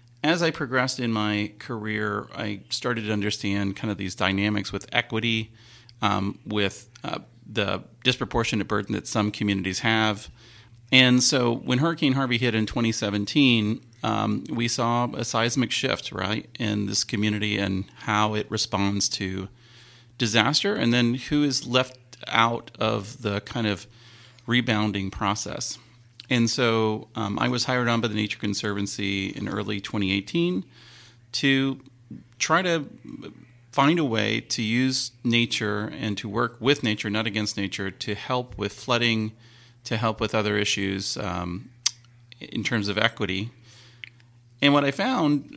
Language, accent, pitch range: English, American, 105-120 Hz